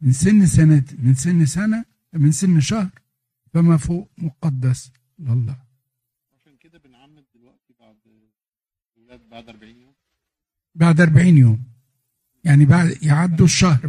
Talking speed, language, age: 120 wpm, Arabic, 60-79